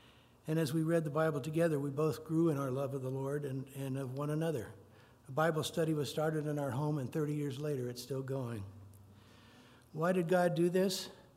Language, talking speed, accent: English, 215 wpm, American